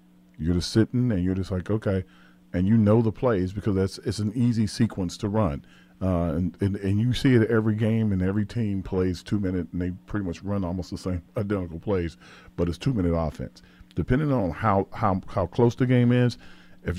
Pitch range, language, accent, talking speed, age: 90-115 Hz, English, American, 215 wpm, 40-59